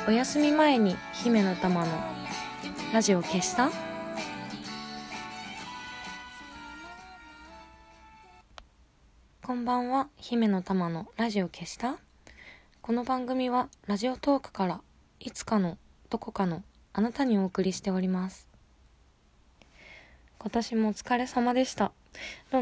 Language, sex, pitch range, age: Japanese, female, 165-230 Hz, 20-39